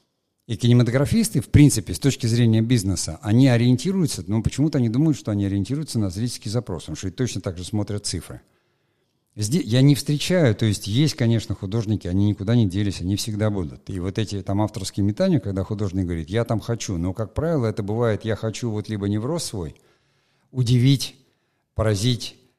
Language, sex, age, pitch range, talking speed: Russian, male, 50-69, 95-120 Hz, 185 wpm